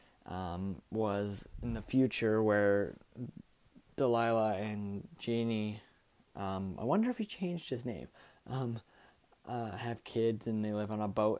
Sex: male